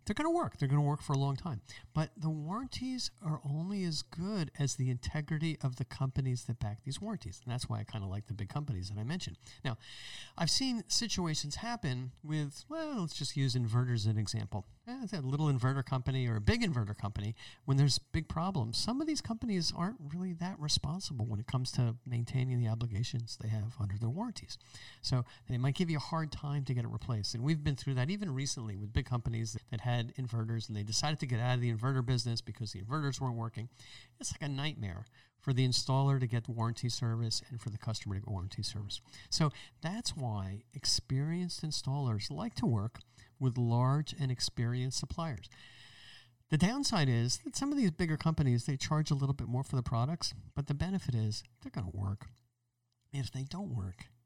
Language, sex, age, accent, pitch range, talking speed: English, male, 50-69, American, 115-150 Hz, 215 wpm